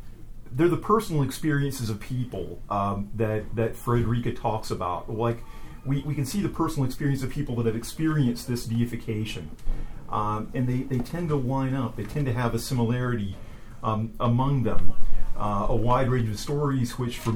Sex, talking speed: male, 180 wpm